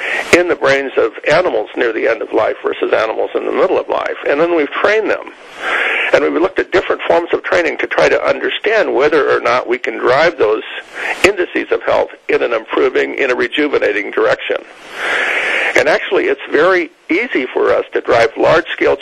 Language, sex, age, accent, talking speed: English, male, 50-69, American, 190 wpm